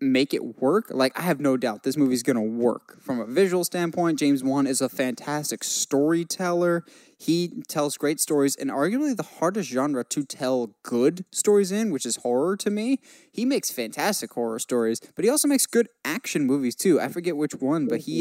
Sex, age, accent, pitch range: male, 10-29, American, 130-175 Hz